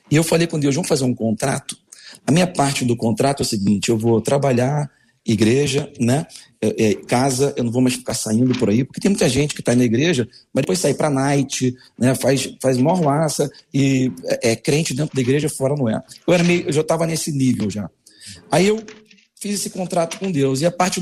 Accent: Brazilian